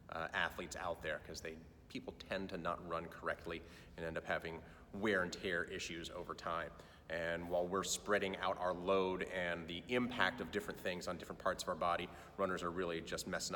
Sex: male